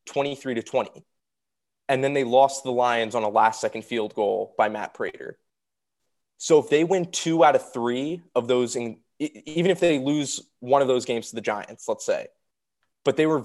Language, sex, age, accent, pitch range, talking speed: English, male, 20-39, American, 115-155 Hz, 195 wpm